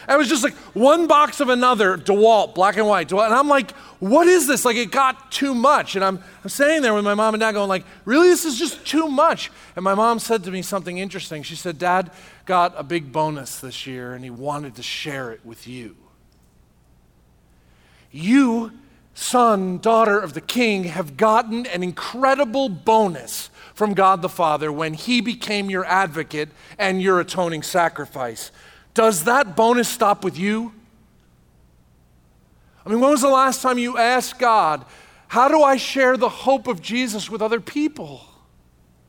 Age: 40-59